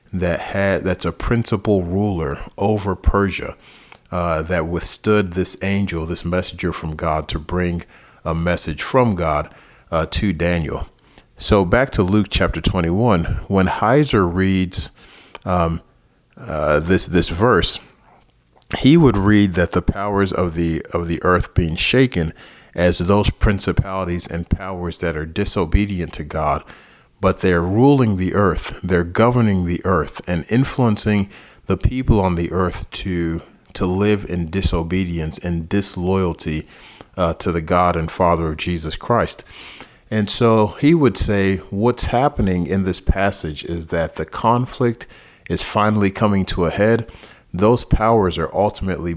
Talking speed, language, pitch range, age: 145 wpm, English, 85-100 Hz, 40-59